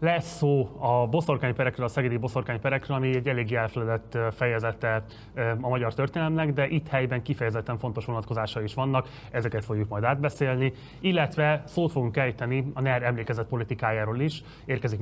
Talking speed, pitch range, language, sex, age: 150 wpm, 115-135 Hz, Hungarian, male, 20-39